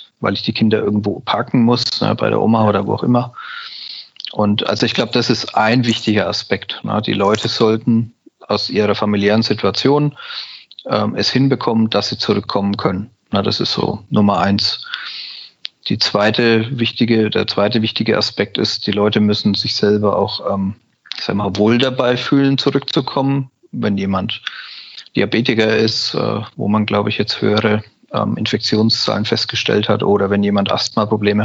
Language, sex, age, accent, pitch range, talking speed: German, male, 40-59, German, 105-125 Hz, 150 wpm